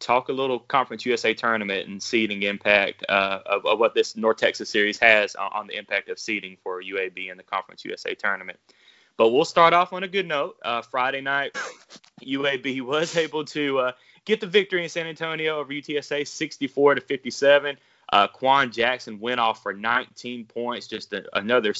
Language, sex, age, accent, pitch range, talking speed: English, male, 20-39, American, 110-140 Hz, 185 wpm